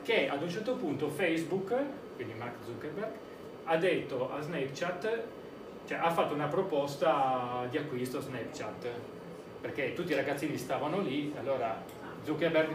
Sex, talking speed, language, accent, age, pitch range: male, 140 wpm, Italian, native, 30-49, 140-180 Hz